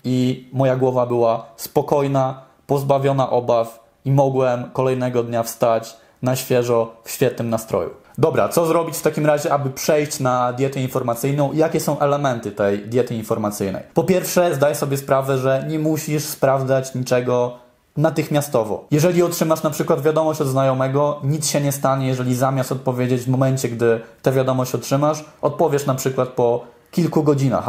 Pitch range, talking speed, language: 125-150 Hz, 155 wpm, Polish